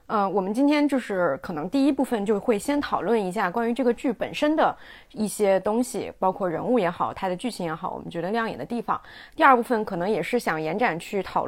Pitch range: 185-245 Hz